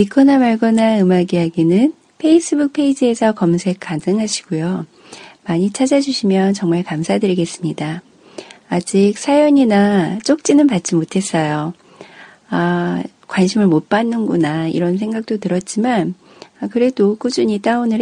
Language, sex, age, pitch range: Korean, female, 40-59, 170-240 Hz